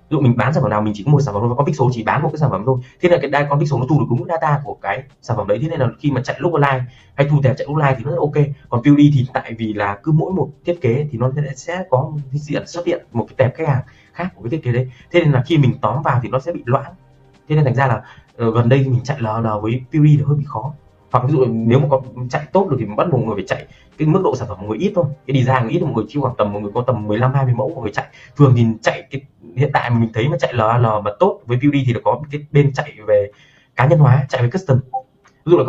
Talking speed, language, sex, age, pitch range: 330 wpm, Vietnamese, male, 20-39, 115-150 Hz